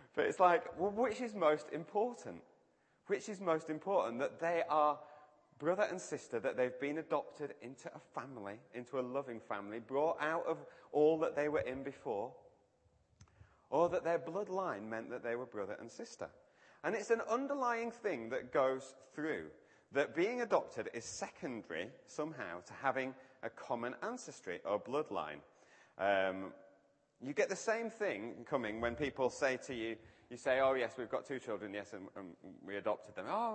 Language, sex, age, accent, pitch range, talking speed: English, male, 30-49, British, 125-195 Hz, 175 wpm